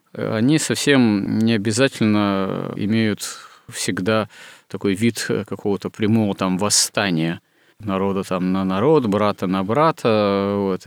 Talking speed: 110 wpm